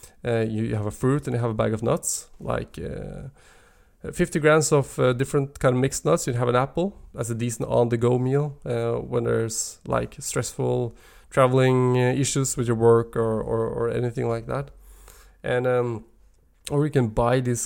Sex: male